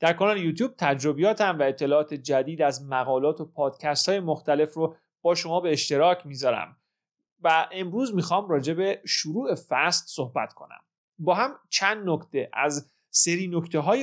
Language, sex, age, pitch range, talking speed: Persian, male, 30-49, 145-185 Hz, 155 wpm